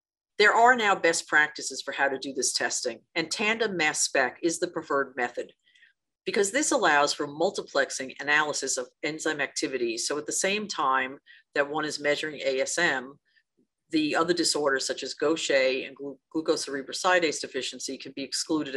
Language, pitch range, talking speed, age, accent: English, 135-200 Hz, 160 wpm, 50-69, American